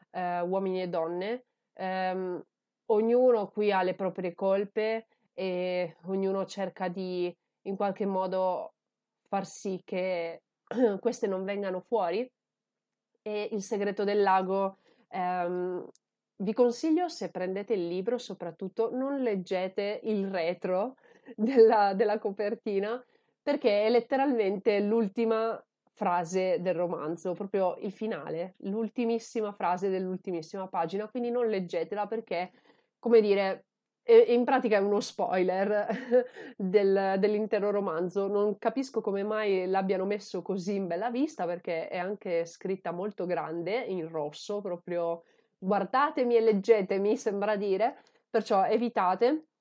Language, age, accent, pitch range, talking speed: Italian, 30-49, native, 185-225 Hz, 115 wpm